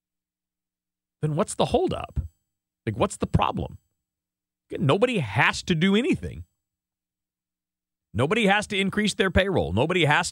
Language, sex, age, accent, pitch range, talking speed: English, male, 40-59, American, 100-145 Hz, 120 wpm